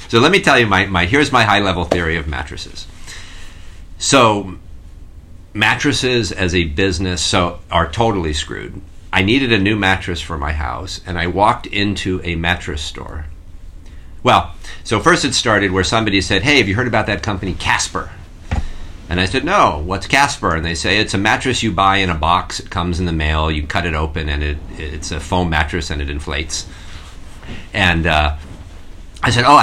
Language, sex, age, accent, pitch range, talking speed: English, male, 50-69, American, 80-100 Hz, 190 wpm